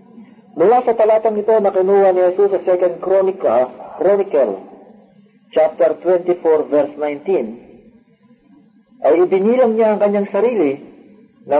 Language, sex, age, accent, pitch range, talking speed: Filipino, male, 40-59, native, 155-220 Hz, 115 wpm